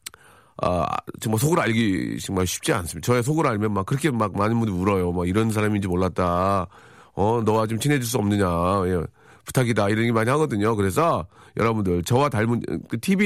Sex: male